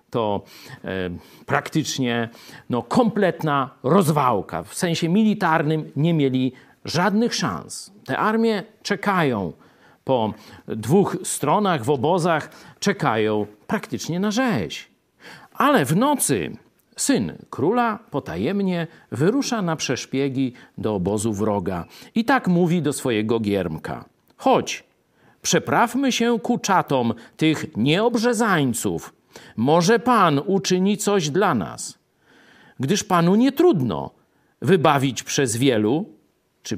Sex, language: male, Polish